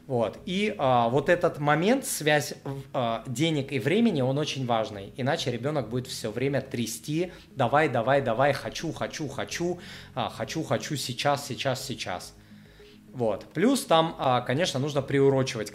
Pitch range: 115-155 Hz